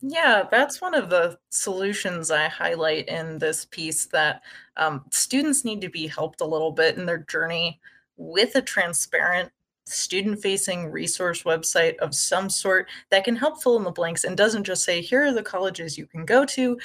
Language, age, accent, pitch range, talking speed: English, 20-39, American, 165-230 Hz, 185 wpm